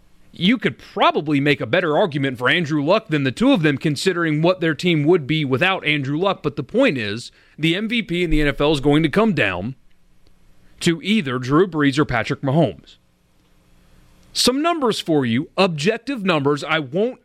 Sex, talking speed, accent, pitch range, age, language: male, 185 wpm, American, 120-170 Hz, 30-49, English